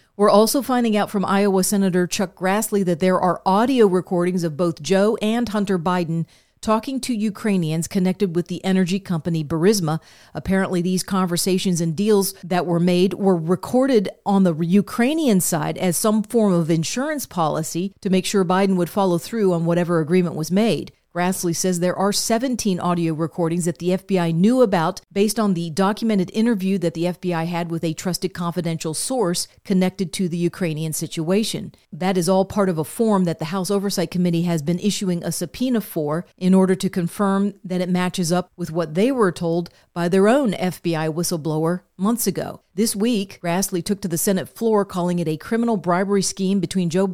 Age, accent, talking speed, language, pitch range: 40-59, American, 185 wpm, English, 175-200 Hz